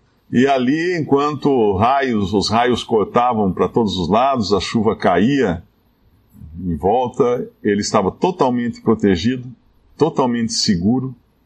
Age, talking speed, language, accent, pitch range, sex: 50-69, 110 wpm, Portuguese, Brazilian, 100-130 Hz, male